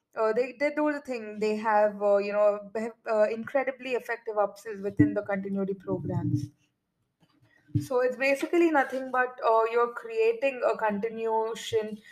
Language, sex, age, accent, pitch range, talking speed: English, female, 20-39, Indian, 210-255 Hz, 145 wpm